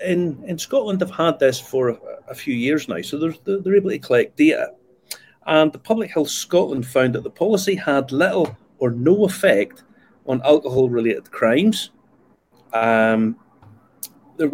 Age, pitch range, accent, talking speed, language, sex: 40-59, 120-180 Hz, British, 155 wpm, English, male